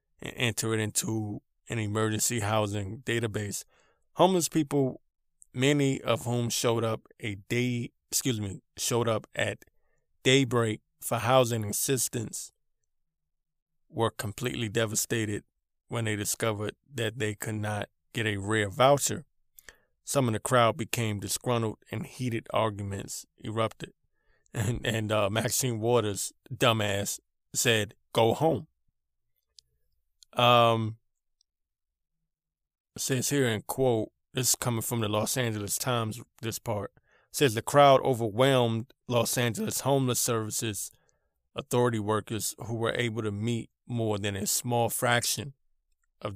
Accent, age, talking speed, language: American, 20-39, 125 wpm, English